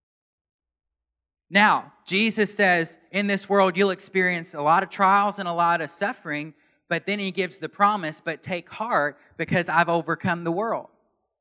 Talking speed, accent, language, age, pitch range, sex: 165 wpm, American, English, 30-49, 165-225 Hz, male